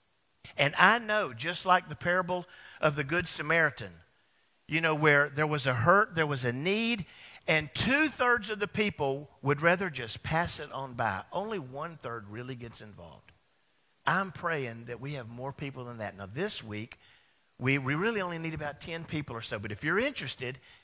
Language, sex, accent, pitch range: English, male, American, 135-180 Hz